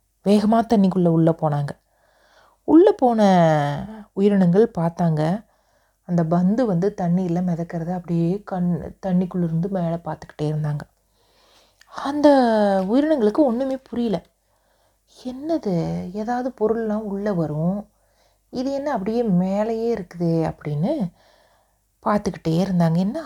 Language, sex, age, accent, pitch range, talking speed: Tamil, female, 30-49, native, 165-215 Hz, 95 wpm